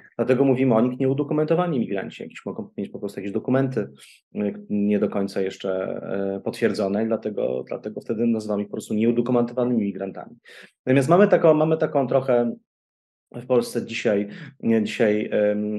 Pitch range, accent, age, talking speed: 105-125 Hz, Polish, 30-49, 135 wpm